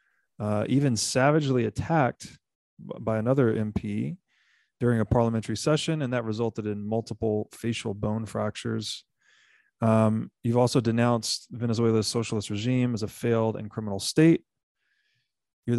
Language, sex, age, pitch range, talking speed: English, male, 30-49, 110-130 Hz, 125 wpm